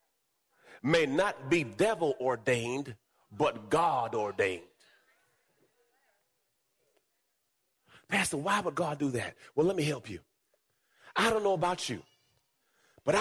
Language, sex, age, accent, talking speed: English, male, 30-49, American, 105 wpm